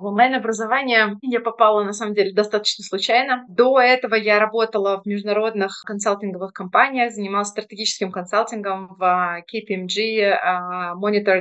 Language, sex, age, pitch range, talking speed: Russian, female, 20-39, 200-235 Hz, 120 wpm